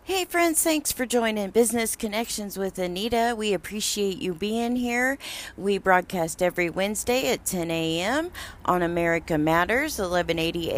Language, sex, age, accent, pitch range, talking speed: English, female, 40-59, American, 185-230 Hz, 140 wpm